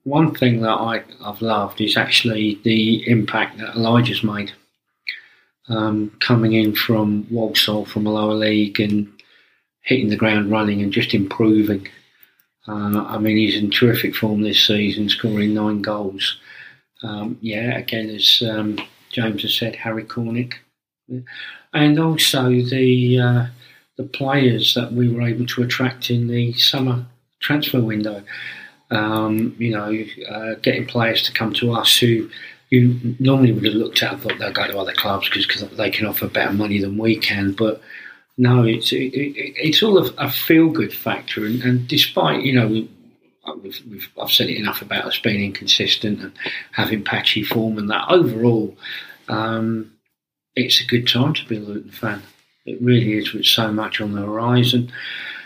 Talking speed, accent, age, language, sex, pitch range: 170 wpm, British, 40-59, English, male, 105-125 Hz